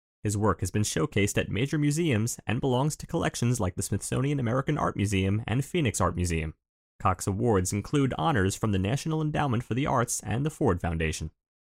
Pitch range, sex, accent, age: 90-135 Hz, male, American, 30-49